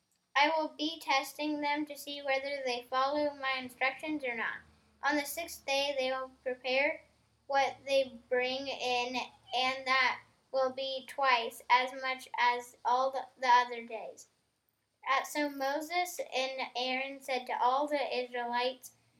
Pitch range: 255-285 Hz